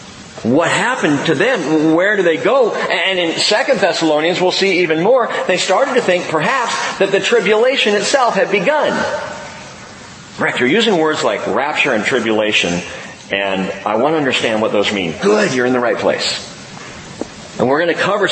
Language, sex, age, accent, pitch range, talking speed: English, male, 40-59, American, 155-225 Hz, 175 wpm